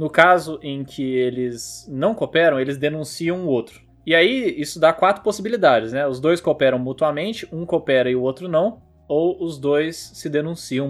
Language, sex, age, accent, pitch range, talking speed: Portuguese, male, 20-39, Brazilian, 125-165 Hz, 180 wpm